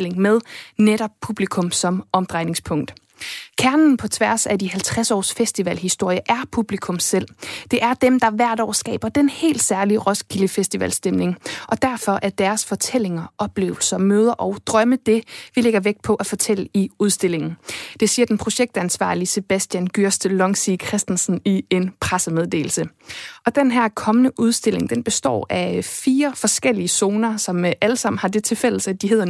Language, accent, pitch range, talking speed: Danish, native, 190-230 Hz, 155 wpm